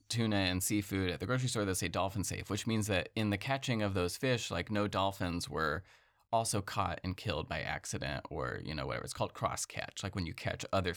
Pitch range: 95-115 Hz